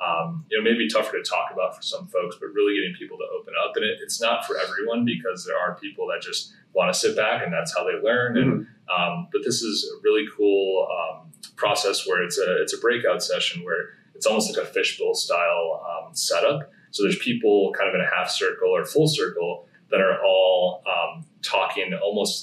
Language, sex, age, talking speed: English, male, 30-49, 220 wpm